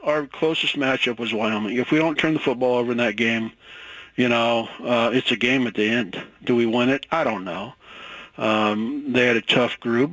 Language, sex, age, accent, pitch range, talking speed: English, male, 40-59, American, 120-135 Hz, 220 wpm